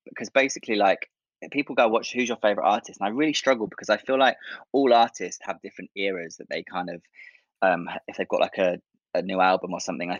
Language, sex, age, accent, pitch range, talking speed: English, male, 20-39, British, 95-115 Hz, 230 wpm